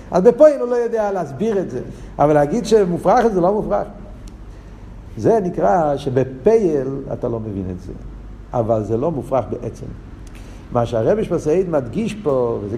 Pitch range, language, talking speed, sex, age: 120-185 Hz, Hebrew, 160 wpm, male, 60-79